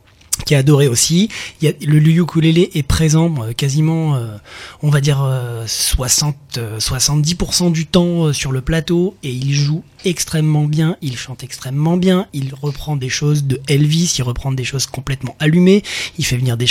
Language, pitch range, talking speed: French, 125-155 Hz, 185 wpm